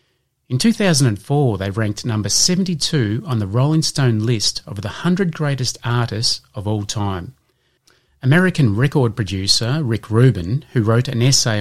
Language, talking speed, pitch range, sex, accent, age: English, 145 wpm, 105-140 Hz, male, Australian, 30-49